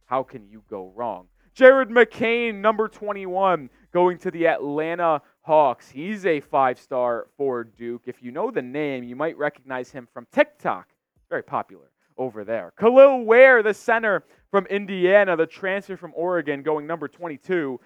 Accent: American